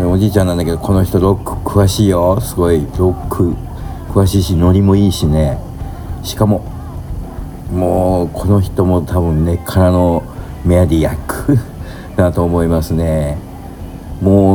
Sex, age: male, 50-69